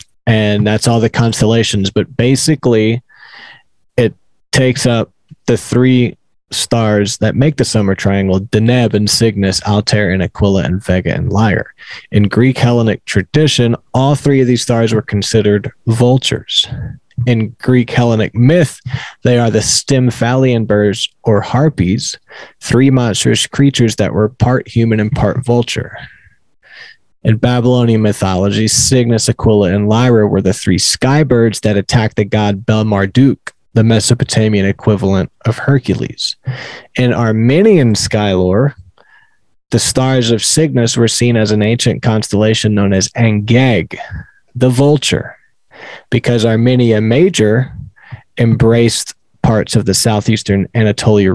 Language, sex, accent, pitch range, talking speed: English, male, American, 105-125 Hz, 130 wpm